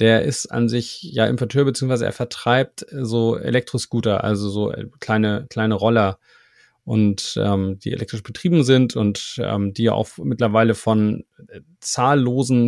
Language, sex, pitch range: German, male, 115-130 Hz